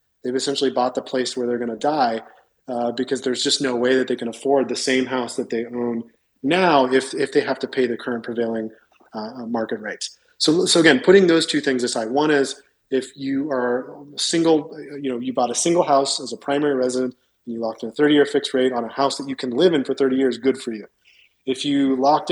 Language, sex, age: English, male, 30-49